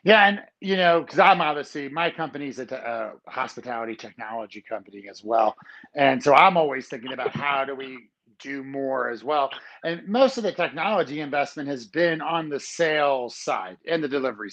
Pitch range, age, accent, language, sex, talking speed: 130-165 Hz, 40-59, American, English, male, 180 wpm